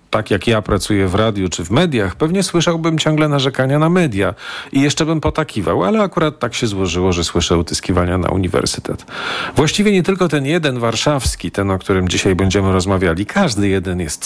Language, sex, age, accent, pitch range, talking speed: Polish, male, 40-59, native, 95-140 Hz, 185 wpm